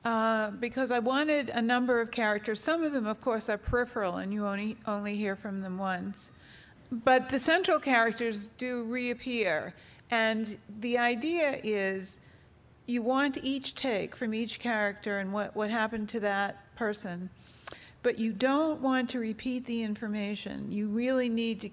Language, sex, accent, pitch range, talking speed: English, female, American, 200-240 Hz, 165 wpm